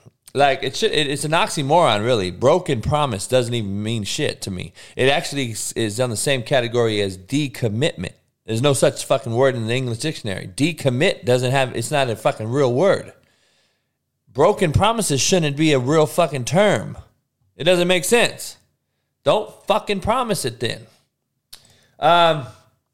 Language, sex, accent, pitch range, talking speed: English, male, American, 115-150 Hz, 150 wpm